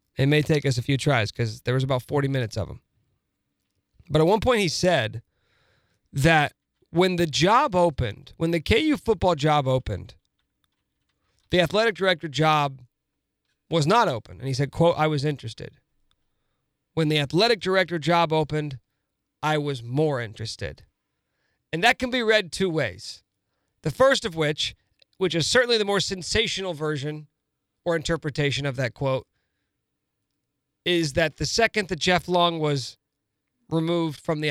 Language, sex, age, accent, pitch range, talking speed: English, male, 40-59, American, 135-175 Hz, 155 wpm